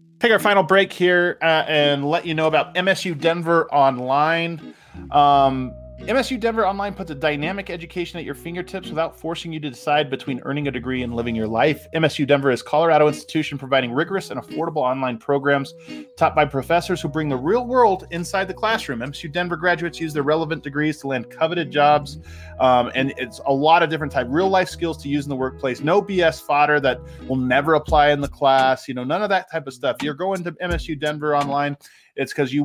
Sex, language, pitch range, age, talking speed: male, English, 135-165 Hz, 20-39, 210 wpm